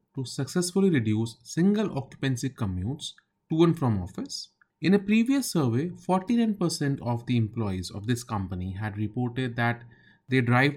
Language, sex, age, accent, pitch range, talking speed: English, male, 30-49, Indian, 105-155 Hz, 145 wpm